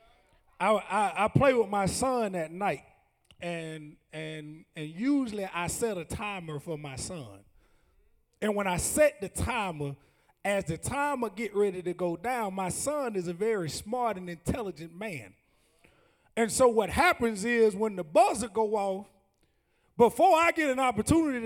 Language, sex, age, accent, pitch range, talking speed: English, male, 30-49, American, 205-295 Hz, 160 wpm